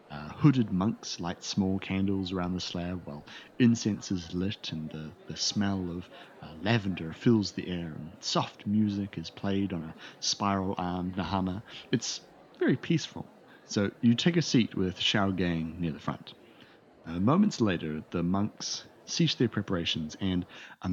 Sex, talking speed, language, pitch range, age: male, 160 wpm, English, 90-120 Hz, 30-49